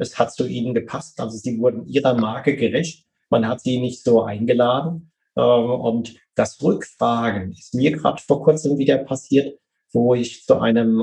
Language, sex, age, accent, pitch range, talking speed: German, male, 30-49, German, 115-140 Hz, 170 wpm